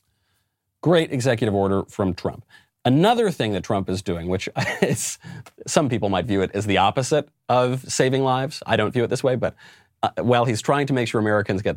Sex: male